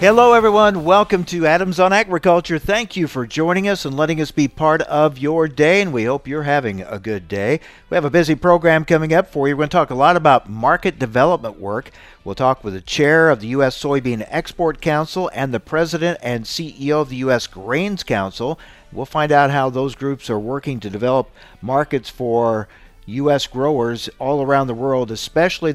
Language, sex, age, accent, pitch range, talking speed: English, male, 50-69, American, 115-160 Hz, 205 wpm